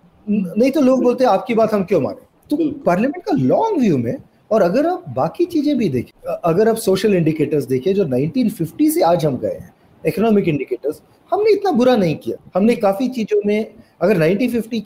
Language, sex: Hindi, male